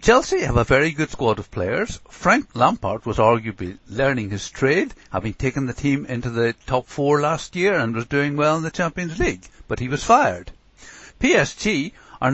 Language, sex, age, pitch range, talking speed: English, male, 60-79, 120-165 Hz, 190 wpm